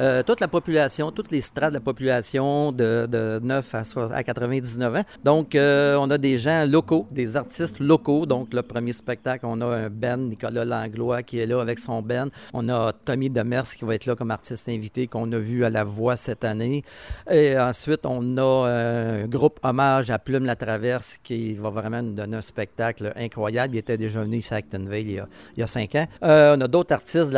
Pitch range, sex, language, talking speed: 115-140 Hz, male, French, 215 wpm